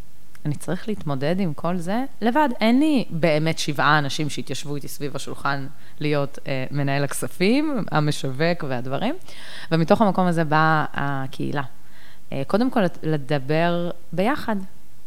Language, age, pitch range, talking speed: Hebrew, 30-49, 145-185 Hz, 125 wpm